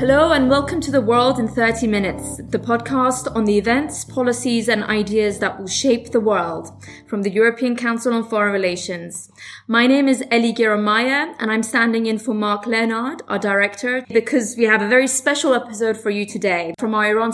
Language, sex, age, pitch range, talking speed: English, female, 20-39, 210-245 Hz, 195 wpm